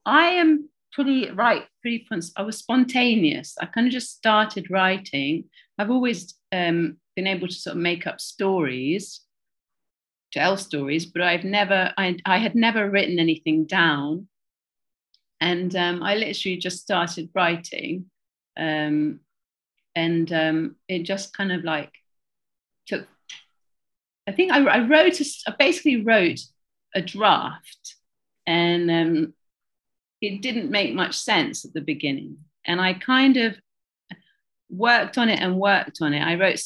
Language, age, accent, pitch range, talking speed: English, 40-59, British, 160-210 Hz, 140 wpm